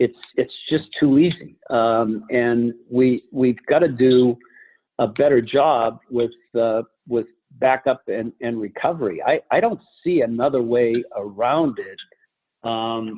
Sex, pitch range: male, 115-130 Hz